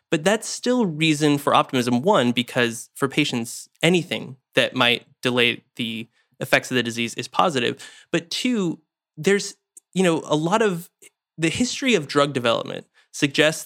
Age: 20-39